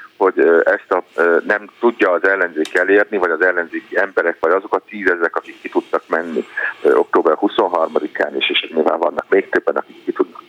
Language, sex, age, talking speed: Hungarian, male, 50-69, 175 wpm